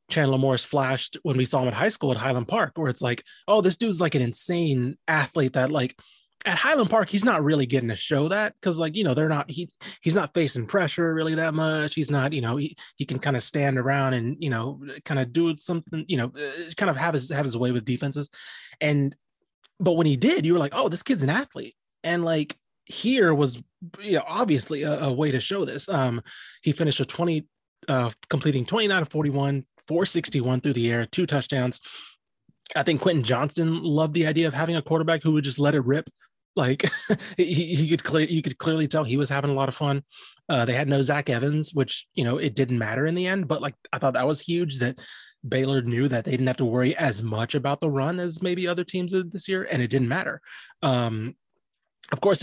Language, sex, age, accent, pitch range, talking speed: English, male, 20-39, American, 130-165 Hz, 230 wpm